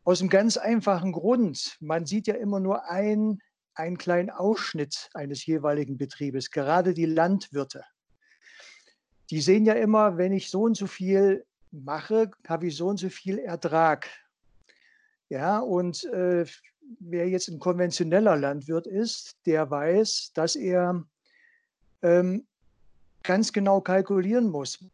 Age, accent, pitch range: 60-79, German, 165-205 Hz